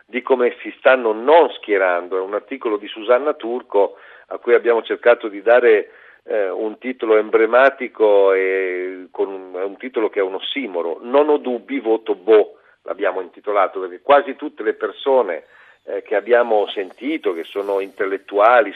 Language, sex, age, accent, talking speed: Italian, male, 50-69, native, 160 wpm